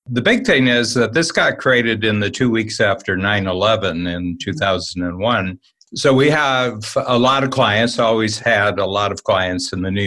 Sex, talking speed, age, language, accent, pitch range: male, 215 wpm, 60-79, English, American, 95-115 Hz